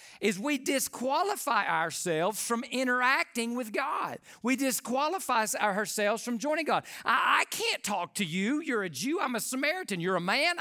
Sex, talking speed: male, 165 wpm